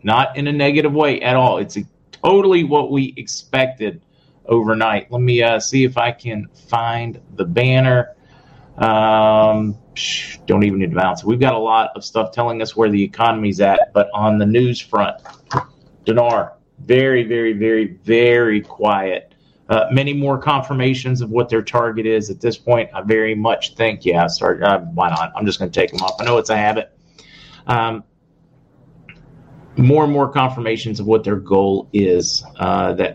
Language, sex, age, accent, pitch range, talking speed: English, male, 40-59, American, 105-130 Hz, 170 wpm